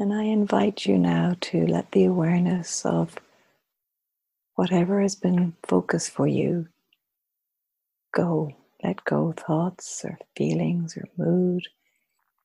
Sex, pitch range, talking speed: female, 155-185 Hz, 115 wpm